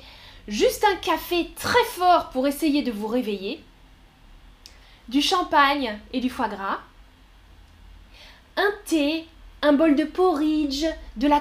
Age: 10-29